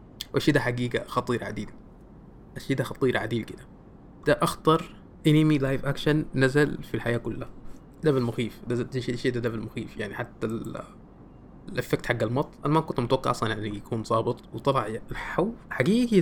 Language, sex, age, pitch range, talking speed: Arabic, male, 20-39, 120-160 Hz, 155 wpm